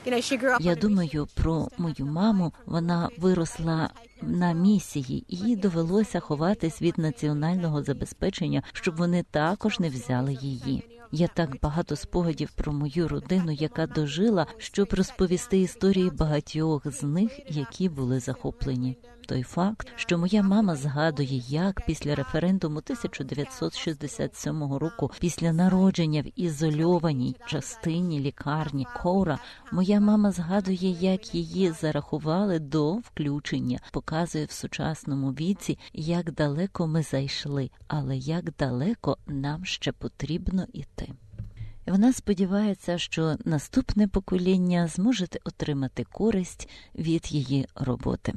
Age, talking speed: 40-59, 115 wpm